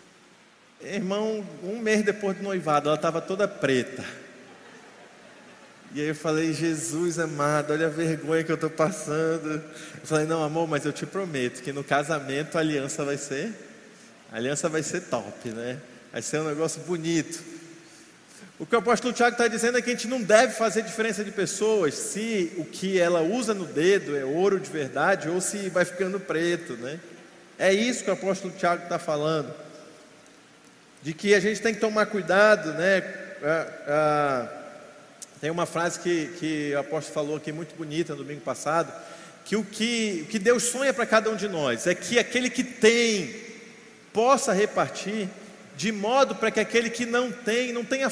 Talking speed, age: 180 wpm, 20-39